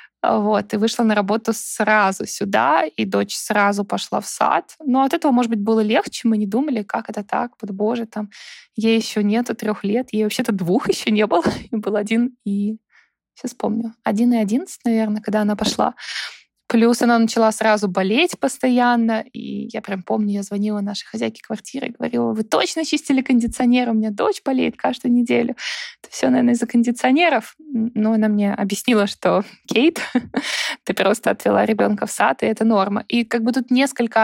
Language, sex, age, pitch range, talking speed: Russian, female, 20-39, 200-240 Hz, 185 wpm